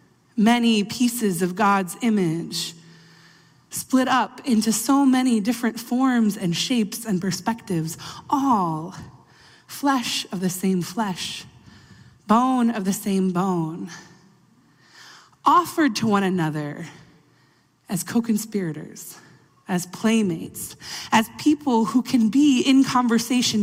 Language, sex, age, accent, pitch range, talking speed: English, female, 20-39, American, 170-255 Hz, 105 wpm